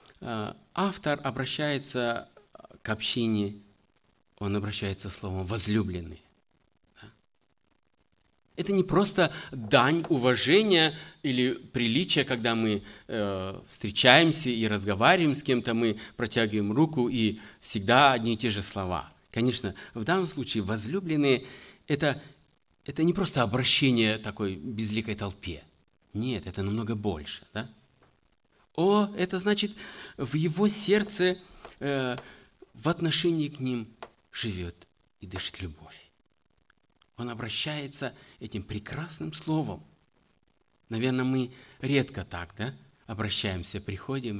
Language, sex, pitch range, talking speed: Russian, male, 100-145 Hz, 110 wpm